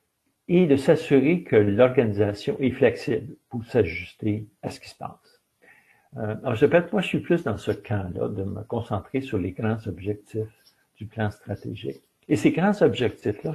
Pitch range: 105-135 Hz